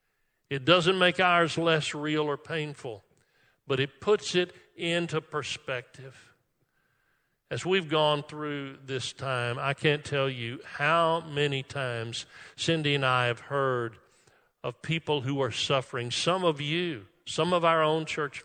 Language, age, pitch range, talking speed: English, 50-69, 130-170 Hz, 145 wpm